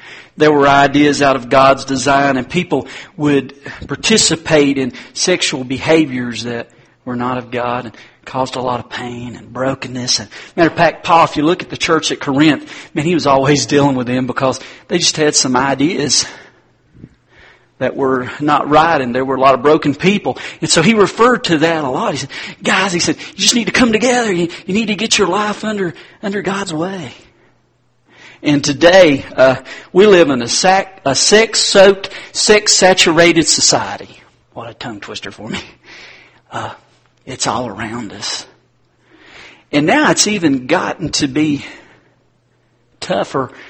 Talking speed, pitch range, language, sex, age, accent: 175 wpm, 130-170 Hz, English, male, 40-59, American